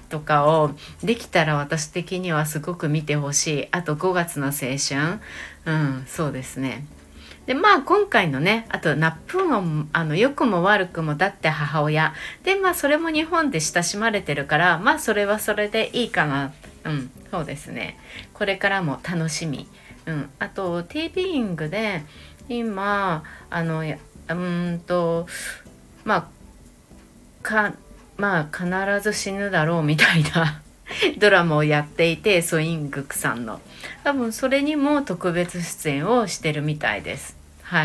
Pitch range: 155-215 Hz